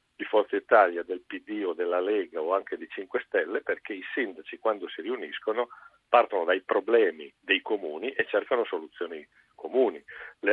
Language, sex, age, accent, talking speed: Italian, male, 50-69, native, 165 wpm